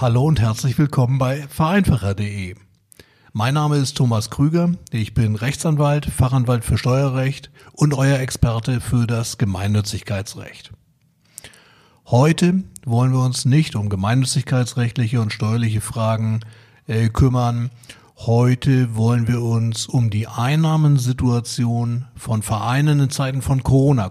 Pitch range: 115-140 Hz